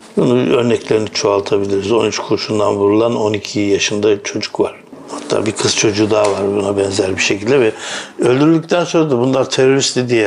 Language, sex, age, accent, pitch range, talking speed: Turkish, male, 60-79, native, 105-140 Hz, 150 wpm